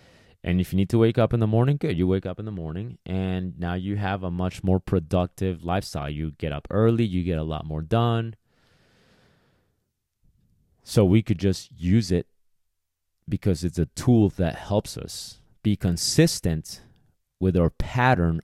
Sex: male